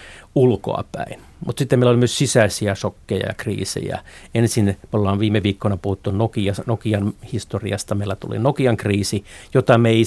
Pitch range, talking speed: 100-115 Hz, 155 wpm